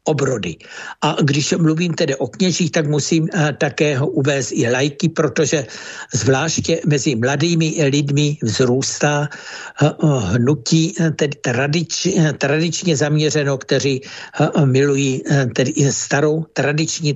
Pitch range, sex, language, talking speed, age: 135-160 Hz, male, Czech, 115 wpm, 60-79